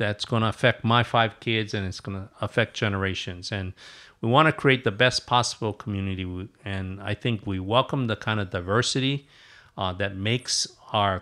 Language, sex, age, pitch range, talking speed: English, male, 50-69, 100-120 Hz, 185 wpm